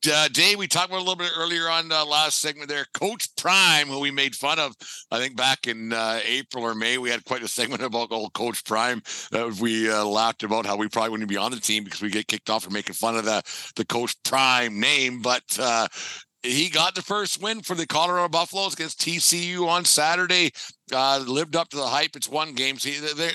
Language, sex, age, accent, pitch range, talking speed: English, male, 60-79, American, 110-145 Hz, 235 wpm